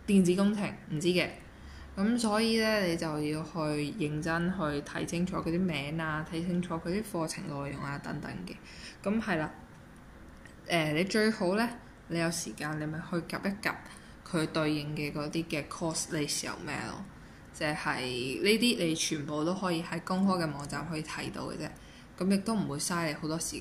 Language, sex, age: Chinese, female, 10-29